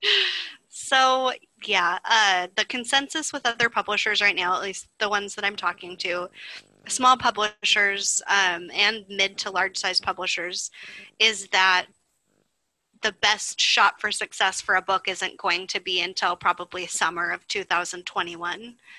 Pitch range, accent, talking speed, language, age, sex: 190-220 Hz, American, 145 wpm, English, 20-39, female